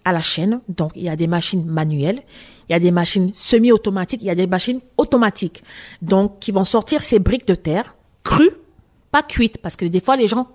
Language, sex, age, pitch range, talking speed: French, female, 30-49, 180-245 Hz, 220 wpm